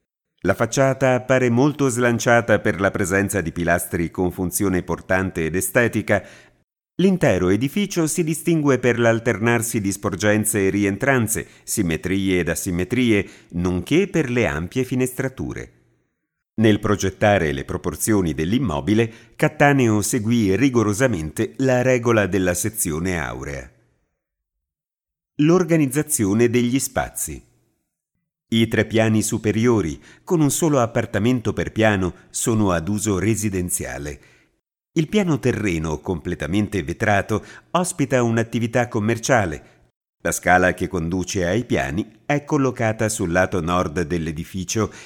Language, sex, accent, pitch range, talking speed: Italian, male, native, 90-125 Hz, 110 wpm